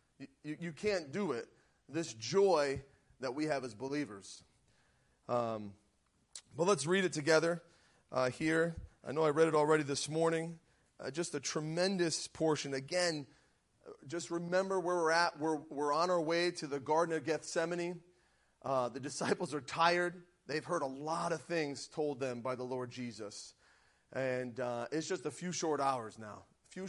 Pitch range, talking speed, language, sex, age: 125-160 Hz, 170 wpm, English, male, 30-49